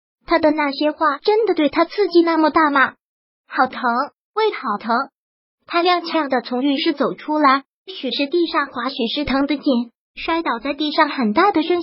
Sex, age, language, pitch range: male, 30-49, Chinese, 265-335 Hz